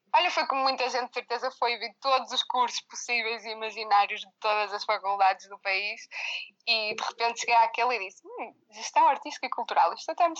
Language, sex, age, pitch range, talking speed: Portuguese, female, 20-39, 205-255 Hz, 210 wpm